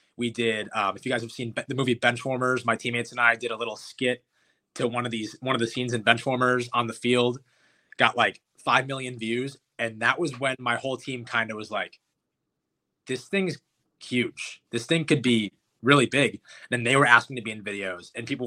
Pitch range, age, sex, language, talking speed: 115-130 Hz, 20-39, male, English, 220 wpm